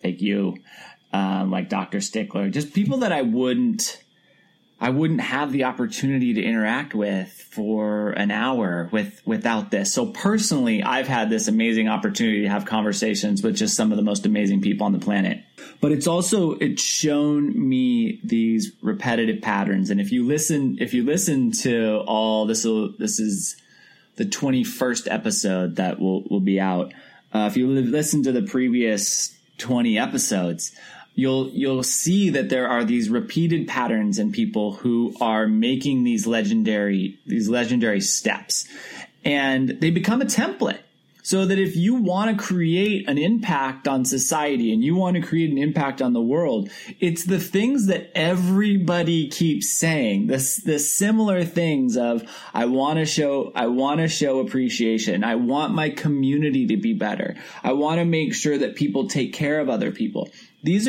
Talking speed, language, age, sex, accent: 170 wpm, English, 30-49, male, American